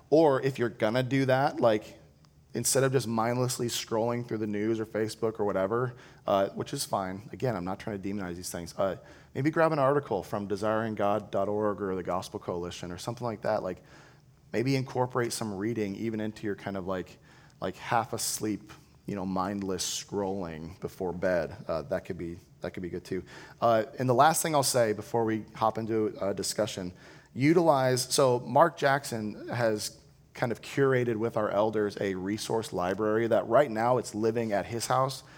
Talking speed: 185 wpm